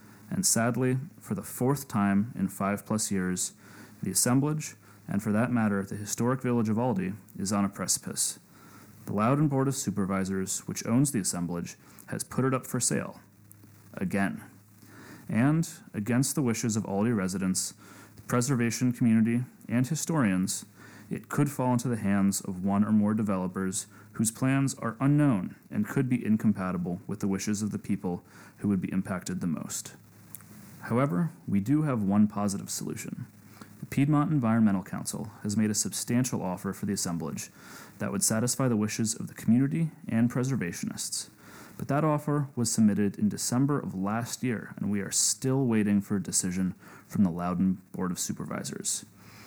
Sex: male